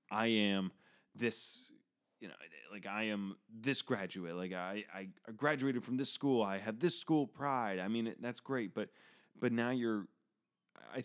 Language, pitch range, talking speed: English, 95-120 Hz, 170 wpm